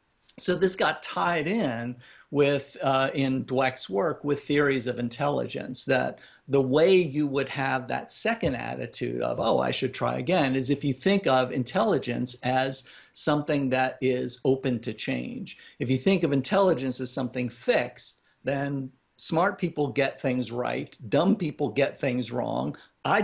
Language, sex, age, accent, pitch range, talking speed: English, male, 50-69, American, 125-145 Hz, 160 wpm